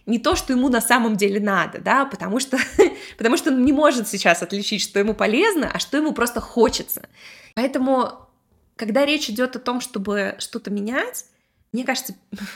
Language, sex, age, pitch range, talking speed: Russian, female, 20-39, 195-250 Hz, 170 wpm